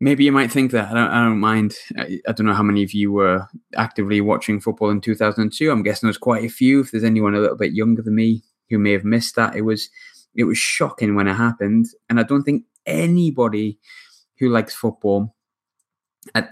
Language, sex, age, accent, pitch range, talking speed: English, male, 20-39, British, 100-115 Hz, 215 wpm